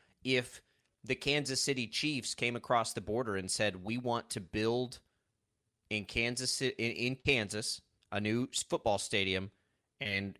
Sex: male